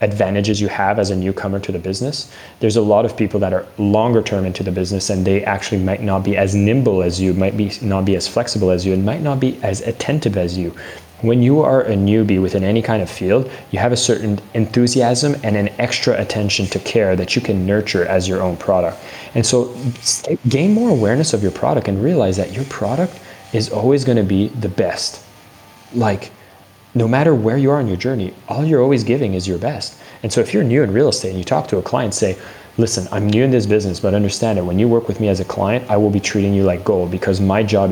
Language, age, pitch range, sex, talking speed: English, 20-39, 95-115 Hz, male, 245 wpm